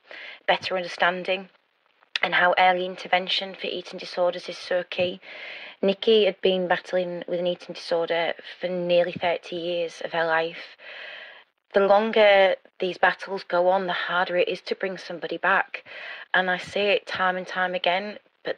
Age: 20-39